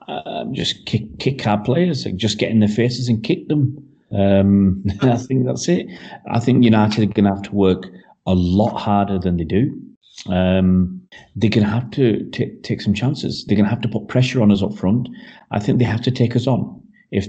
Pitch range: 100-120 Hz